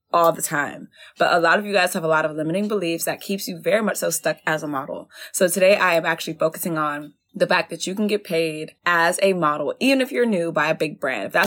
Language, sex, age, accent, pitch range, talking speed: English, female, 20-39, American, 160-180 Hz, 270 wpm